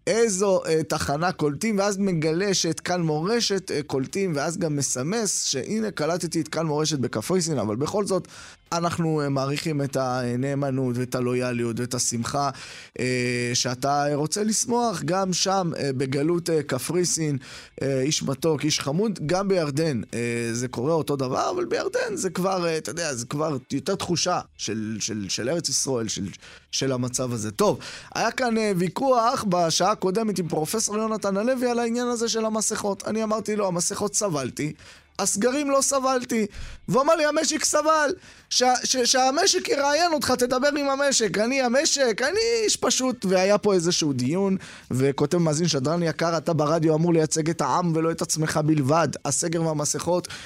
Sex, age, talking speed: male, 20-39, 155 wpm